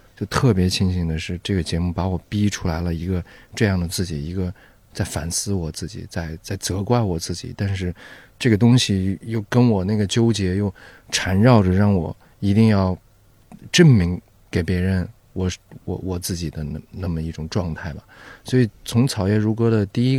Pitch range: 90-105 Hz